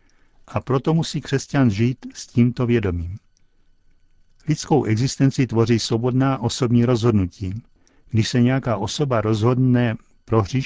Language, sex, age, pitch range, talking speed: Czech, male, 60-79, 105-130 Hz, 115 wpm